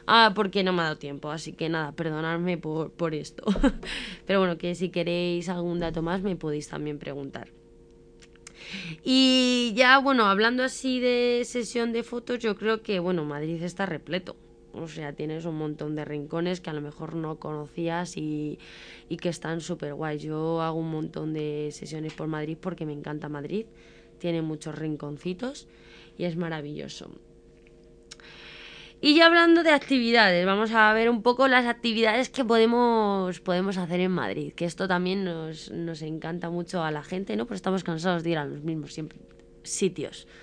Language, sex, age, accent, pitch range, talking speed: Spanish, female, 20-39, Spanish, 155-215 Hz, 175 wpm